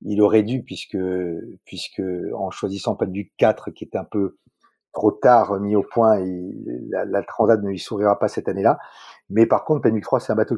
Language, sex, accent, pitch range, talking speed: French, male, French, 100-115 Hz, 205 wpm